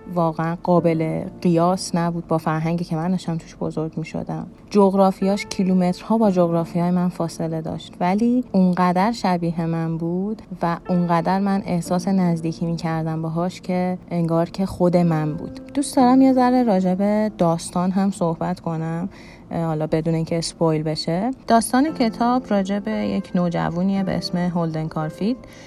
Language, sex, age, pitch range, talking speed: Persian, female, 30-49, 165-200 Hz, 140 wpm